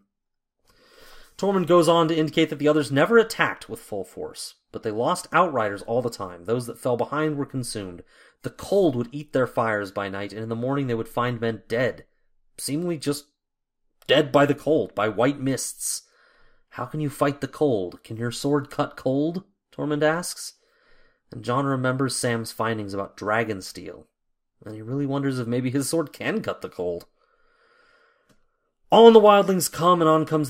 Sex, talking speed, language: male, 180 wpm, English